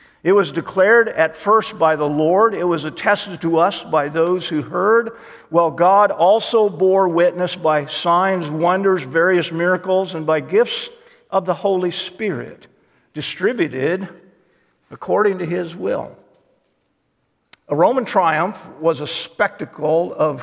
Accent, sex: American, male